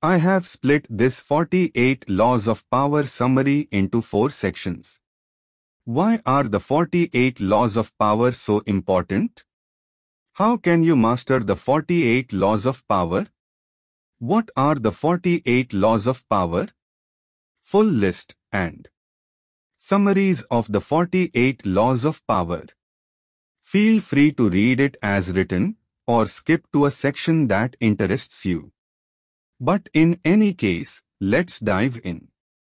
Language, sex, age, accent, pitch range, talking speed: Hindi, male, 30-49, native, 105-165 Hz, 125 wpm